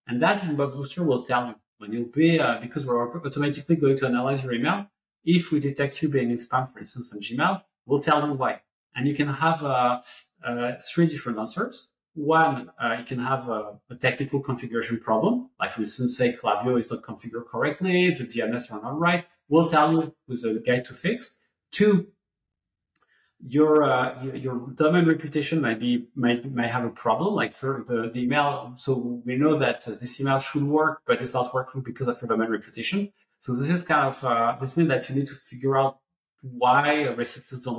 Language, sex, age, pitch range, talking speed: English, male, 40-59, 120-155 Hz, 205 wpm